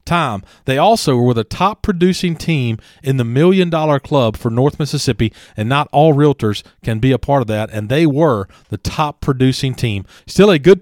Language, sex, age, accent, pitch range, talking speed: English, male, 40-59, American, 120-175 Hz, 200 wpm